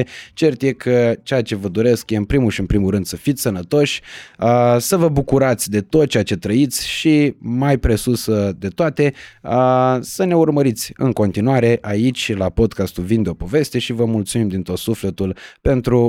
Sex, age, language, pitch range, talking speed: male, 20-39, Romanian, 105-140 Hz, 180 wpm